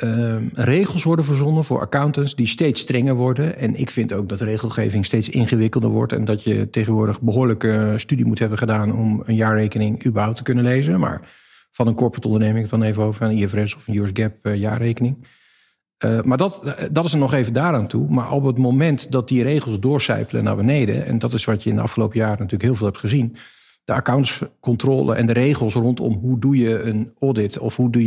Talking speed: 215 wpm